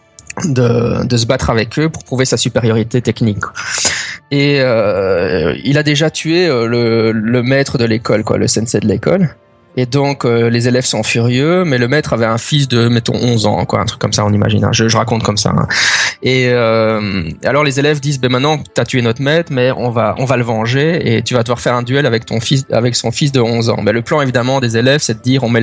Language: French